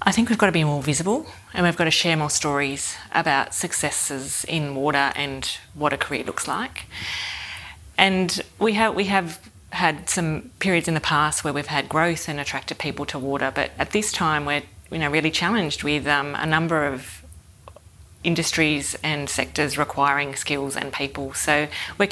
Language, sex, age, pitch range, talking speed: English, female, 30-49, 145-170 Hz, 185 wpm